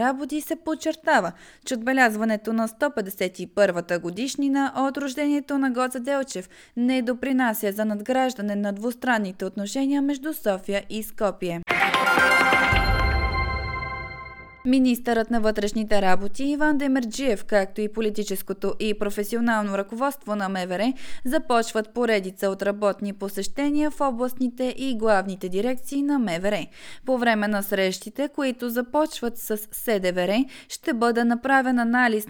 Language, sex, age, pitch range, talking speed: Bulgarian, female, 20-39, 200-250 Hz, 115 wpm